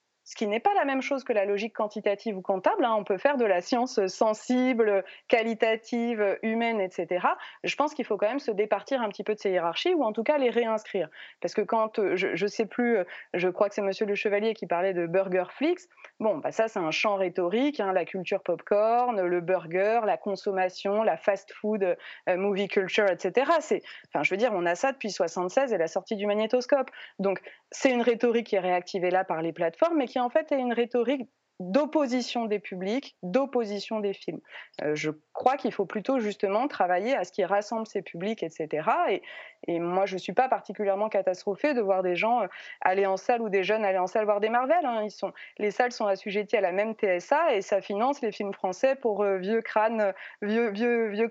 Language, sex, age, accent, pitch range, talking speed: French, female, 20-39, French, 195-240 Hz, 215 wpm